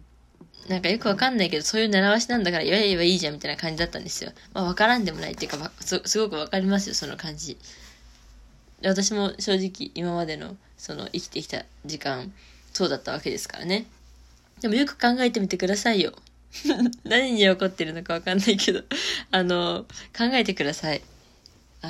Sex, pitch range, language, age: female, 155-210 Hz, Japanese, 20-39